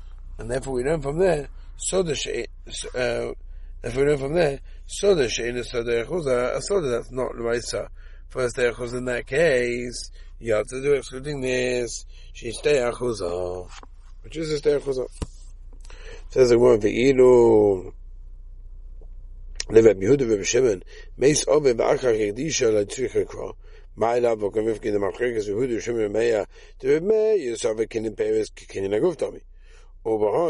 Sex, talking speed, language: male, 105 wpm, English